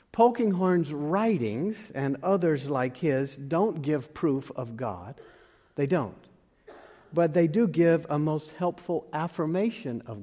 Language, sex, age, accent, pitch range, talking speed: English, male, 50-69, American, 135-175 Hz, 130 wpm